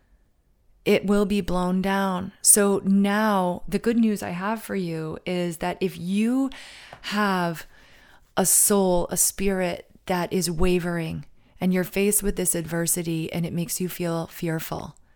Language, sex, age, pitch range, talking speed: English, female, 30-49, 165-195 Hz, 150 wpm